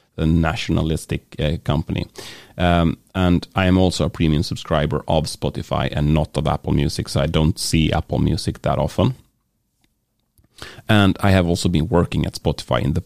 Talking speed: 170 wpm